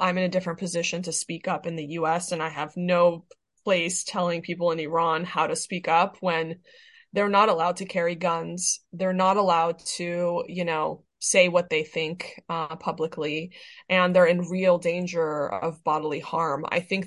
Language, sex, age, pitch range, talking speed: English, female, 20-39, 165-185 Hz, 185 wpm